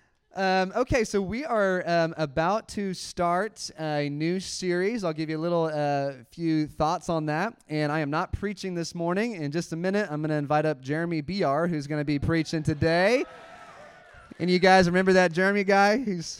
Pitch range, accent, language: 130-170 Hz, American, English